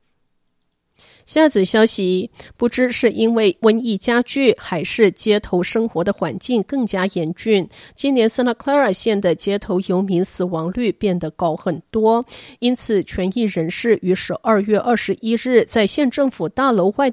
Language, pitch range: Chinese, 180-235 Hz